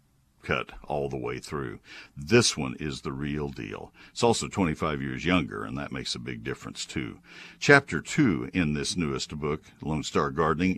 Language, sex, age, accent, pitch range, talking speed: English, male, 60-79, American, 75-100 Hz, 180 wpm